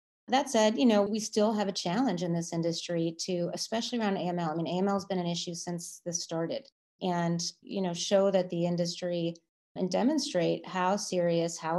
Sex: female